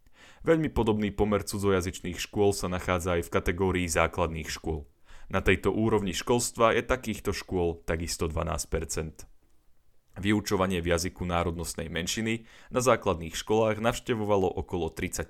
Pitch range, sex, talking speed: 85-110 Hz, male, 125 wpm